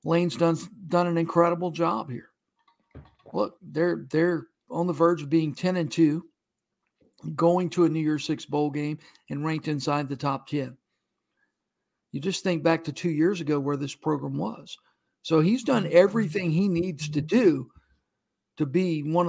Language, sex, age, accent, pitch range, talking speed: English, male, 60-79, American, 150-180 Hz, 170 wpm